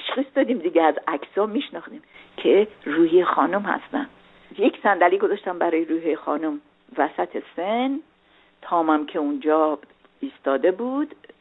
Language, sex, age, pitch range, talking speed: Persian, female, 50-69, 225-360 Hz, 120 wpm